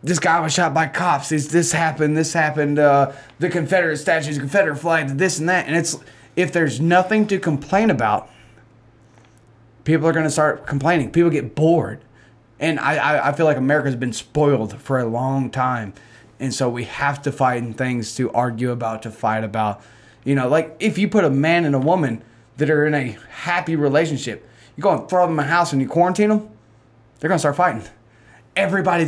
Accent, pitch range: American, 120-165 Hz